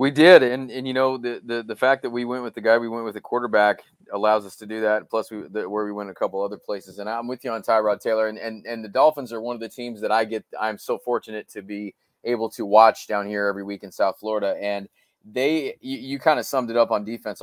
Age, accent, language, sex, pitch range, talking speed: 30-49, American, English, male, 105-130 Hz, 280 wpm